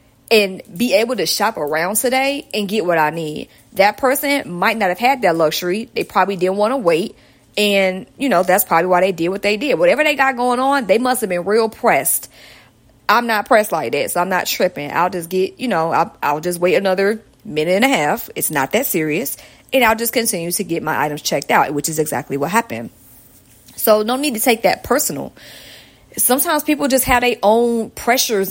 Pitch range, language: 180-255 Hz, English